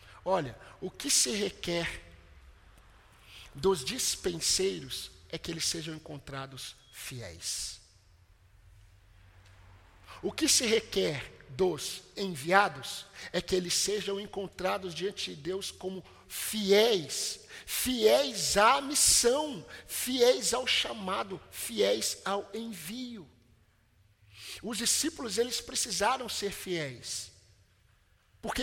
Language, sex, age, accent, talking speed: Portuguese, male, 50-69, Brazilian, 95 wpm